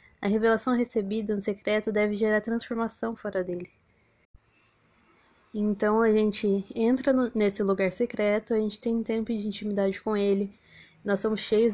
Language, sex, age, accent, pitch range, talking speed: Portuguese, female, 10-29, Brazilian, 205-235 Hz, 150 wpm